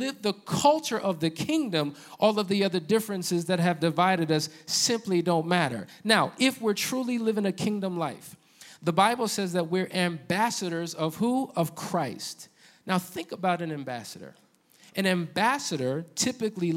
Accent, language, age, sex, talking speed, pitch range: American, English, 50-69, male, 155 wpm, 165-210 Hz